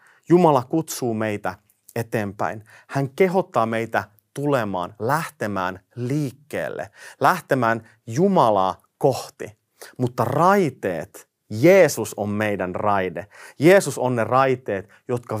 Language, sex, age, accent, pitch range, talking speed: Finnish, male, 30-49, native, 105-160 Hz, 95 wpm